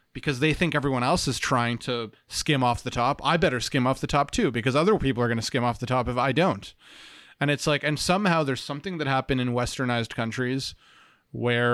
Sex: male